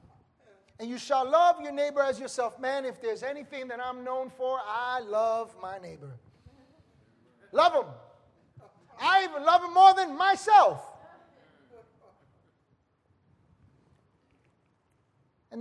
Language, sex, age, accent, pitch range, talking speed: English, male, 40-59, American, 230-315 Hz, 115 wpm